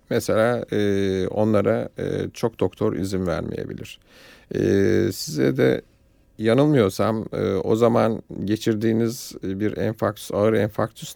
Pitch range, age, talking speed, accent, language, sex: 95-115 Hz, 50-69, 110 wpm, native, Turkish, male